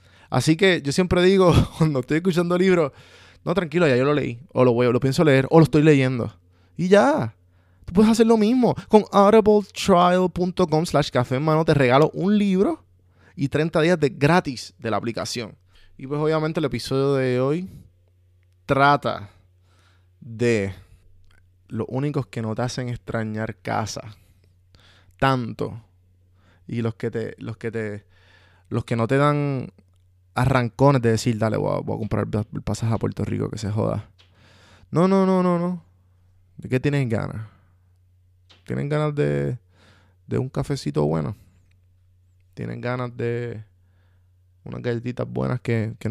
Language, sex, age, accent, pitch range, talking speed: Spanish, male, 20-39, Venezuelan, 95-145 Hz, 160 wpm